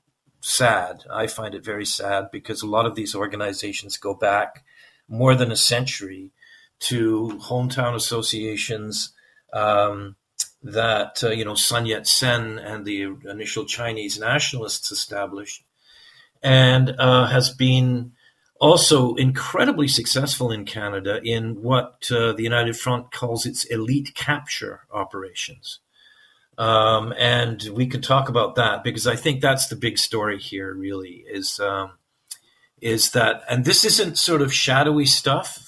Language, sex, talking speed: English, male, 135 wpm